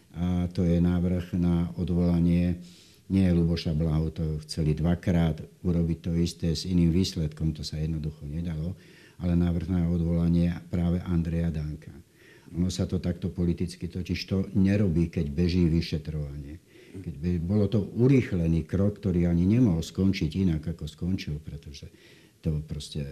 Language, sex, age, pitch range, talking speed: Slovak, male, 60-79, 80-95 Hz, 145 wpm